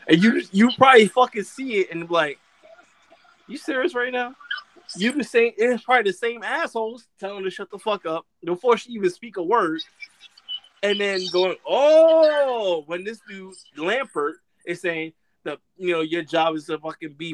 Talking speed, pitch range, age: 185 wpm, 190-315 Hz, 20-39